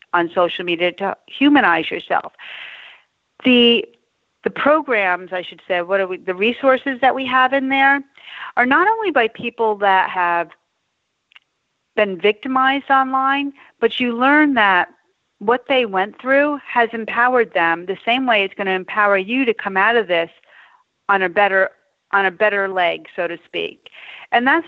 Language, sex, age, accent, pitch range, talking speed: English, female, 40-59, American, 190-270 Hz, 165 wpm